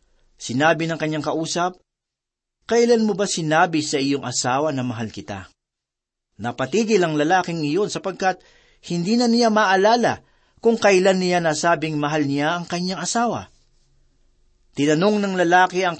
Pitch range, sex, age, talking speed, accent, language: 145-205 Hz, male, 40-59, 135 wpm, native, Filipino